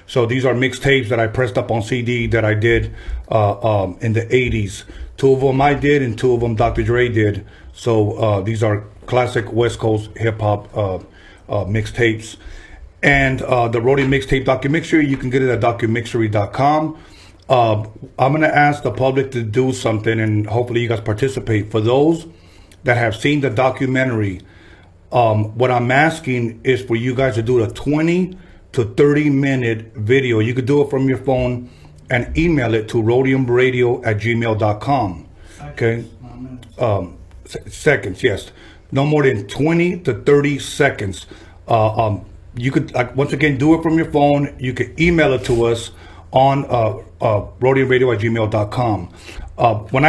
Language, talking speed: English, 170 wpm